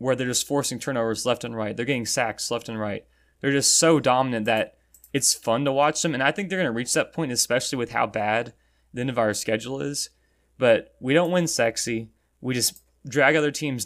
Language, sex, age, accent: English, male, 20-39, American